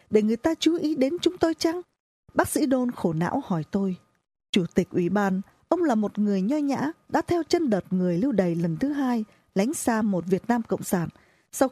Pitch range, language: 190-280 Hz, Vietnamese